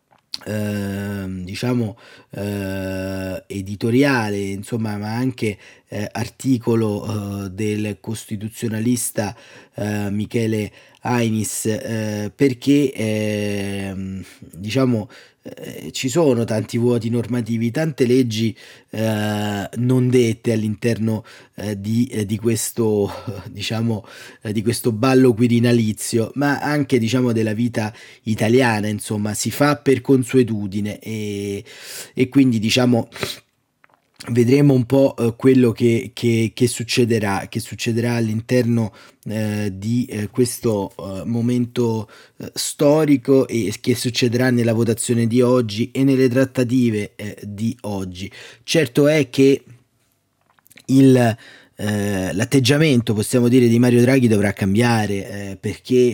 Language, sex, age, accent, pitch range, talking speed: Italian, male, 30-49, native, 105-125 Hz, 105 wpm